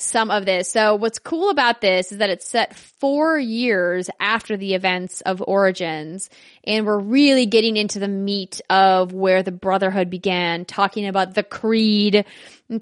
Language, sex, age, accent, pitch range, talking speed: English, female, 10-29, American, 195-270 Hz, 170 wpm